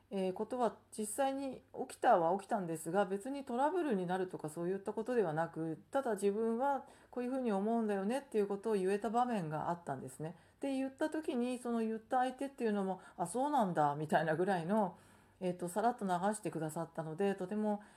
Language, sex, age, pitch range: Japanese, female, 40-59, 170-235 Hz